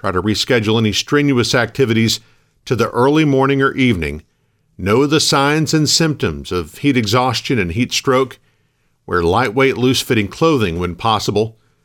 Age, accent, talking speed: 50-69, American, 145 wpm